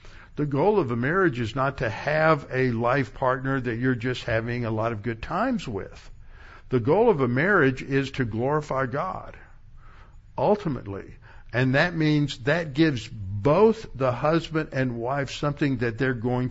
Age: 60-79